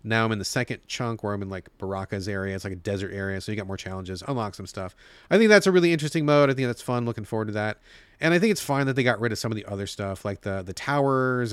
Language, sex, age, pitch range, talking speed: English, male, 30-49, 110-155 Hz, 310 wpm